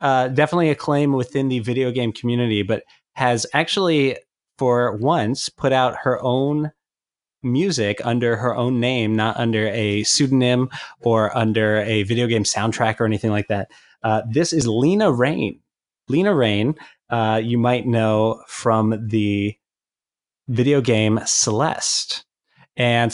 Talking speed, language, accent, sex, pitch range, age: 140 wpm, English, American, male, 110-140 Hz, 20-39